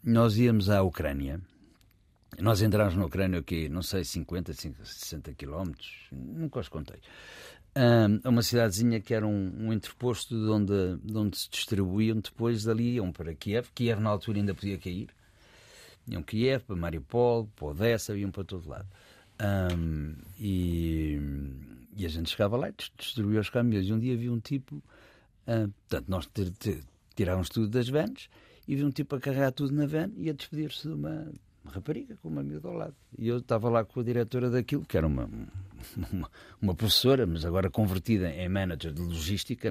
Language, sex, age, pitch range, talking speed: Portuguese, male, 60-79, 95-125 Hz, 180 wpm